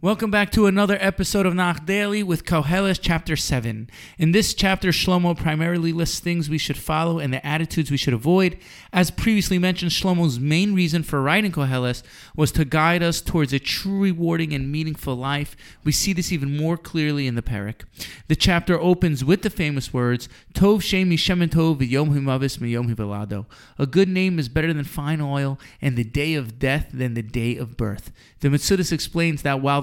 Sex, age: male, 30-49